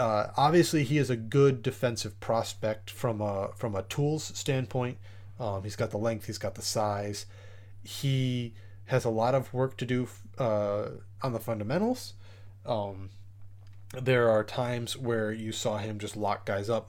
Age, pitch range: 30-49, 100-125 Hz